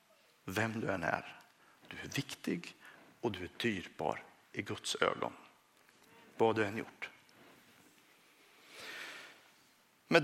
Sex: male